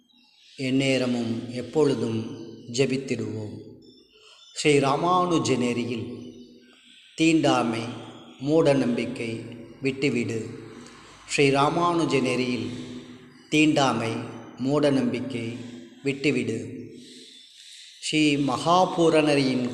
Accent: native